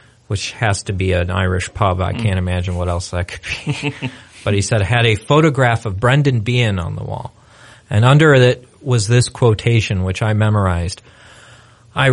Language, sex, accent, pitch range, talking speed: English, male, American, 105-125 Hz, 190 wpm